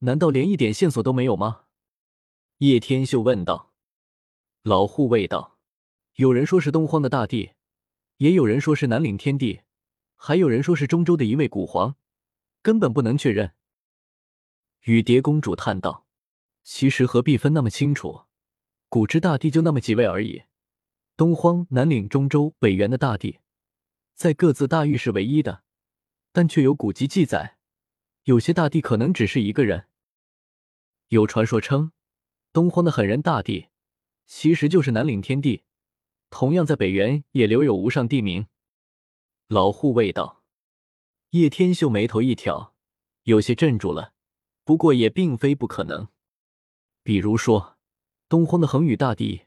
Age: 20-39